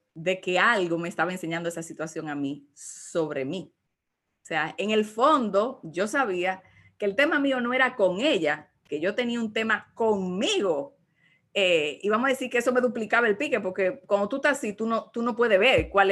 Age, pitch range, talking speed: 30-49, 180-225 Hz, 210 wpm